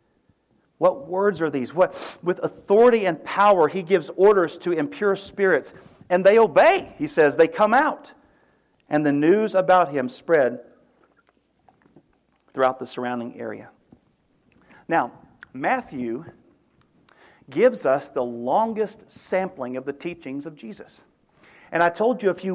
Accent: American